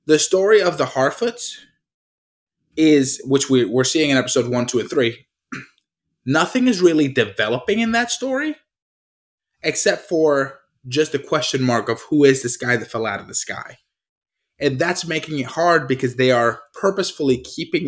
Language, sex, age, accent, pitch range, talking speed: English, male, 20-39, American, 125-165 Hz, 170 wpm